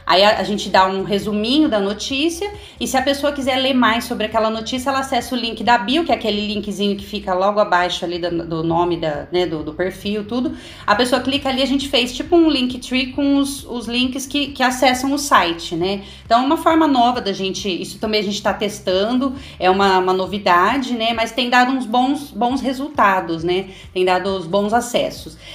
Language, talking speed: Portuguese, 220 wpm